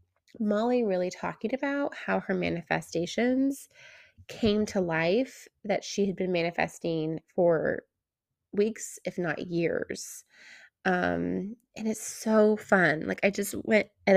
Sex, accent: female, American